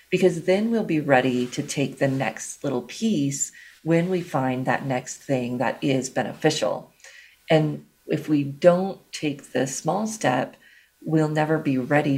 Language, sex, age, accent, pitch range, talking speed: English, female, 40-59, American, 135-170 Hz, 160 wpm